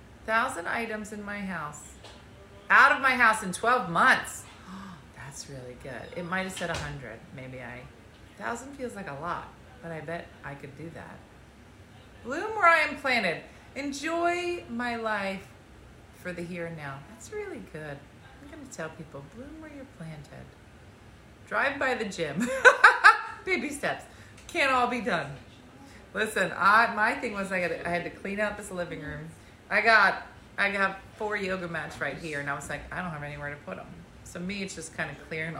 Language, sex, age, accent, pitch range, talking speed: English, female, 30-49, American, 150-220 Hz, 185 wpm